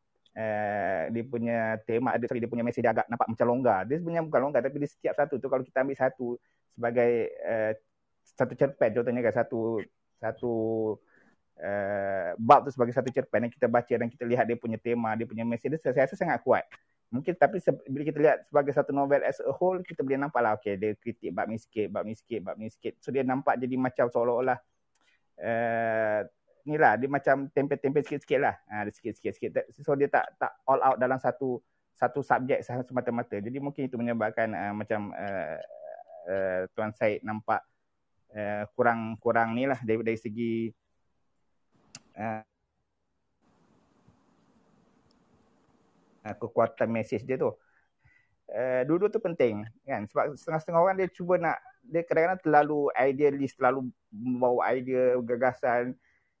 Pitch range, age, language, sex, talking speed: 110-140 Hz, 30-49, Malay, male, 170 wpm